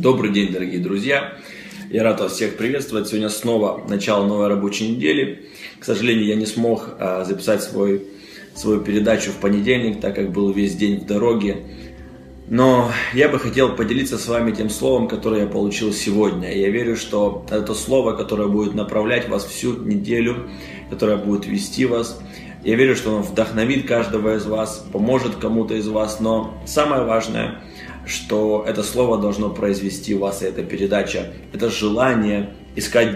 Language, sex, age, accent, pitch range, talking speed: Russian, male, 20-39, native, 100-115 Hz, 160 wpm